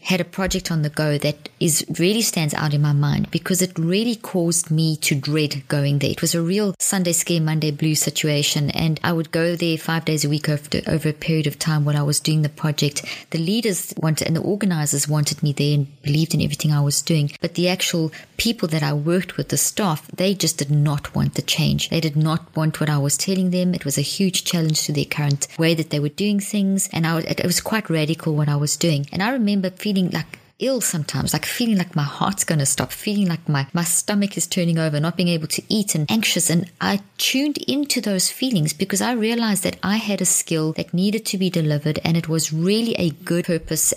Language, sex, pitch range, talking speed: English, female, 155-190 Hz, 240 wpm